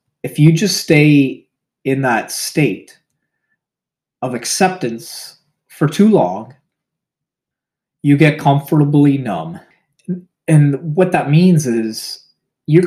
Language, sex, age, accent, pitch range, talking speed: English, male, 30-49, American, 120-165 Hz, 105 wpm